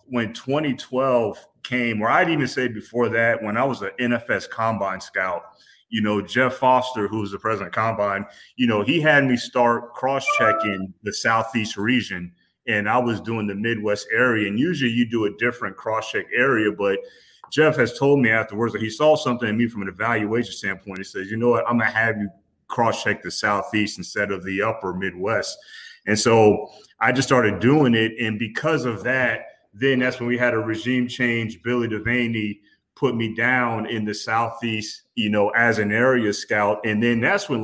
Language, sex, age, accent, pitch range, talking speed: English, male, 30-49, American, 105-125 Hz, 195 wpm